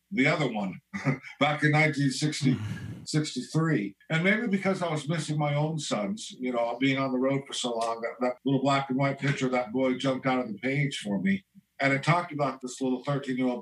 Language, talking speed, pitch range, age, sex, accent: English, 210 wpm, 125-155 Hz, 50-69, male, American